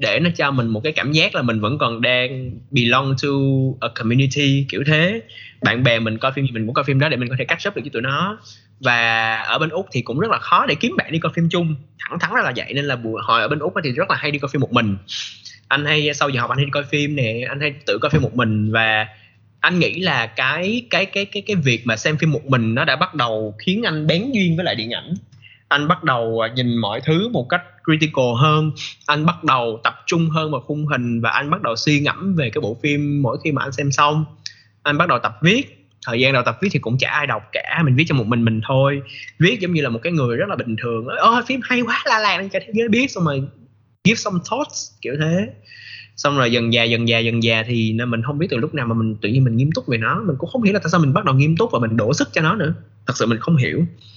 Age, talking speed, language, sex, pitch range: 20-39, 280 wpm, Vietnamese, male, 115-160 Hz